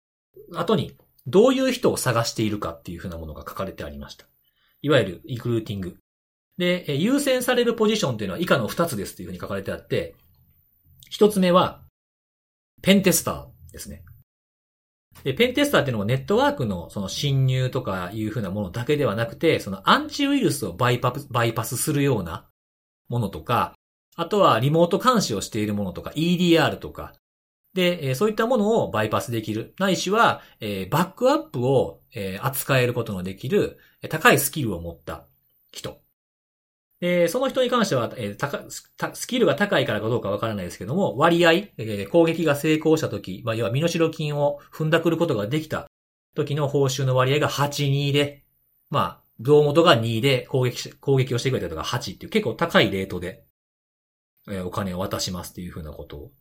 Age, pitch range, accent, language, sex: 40-59, 100-170 Hz, native, Japanese, male